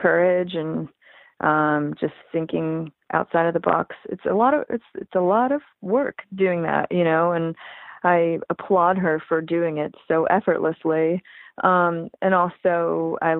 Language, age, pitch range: English, 30-49, 165-190 Hz